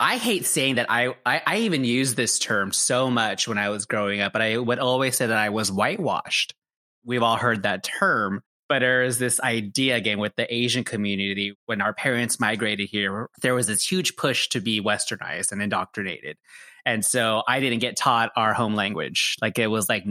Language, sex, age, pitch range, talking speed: English, male, 30-49, 105-125 Hz, 210 wpm